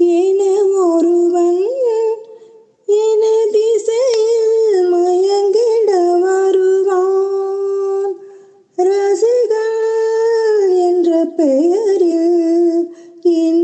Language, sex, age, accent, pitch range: Tamil, female, 20-39, native, 220-360 Hz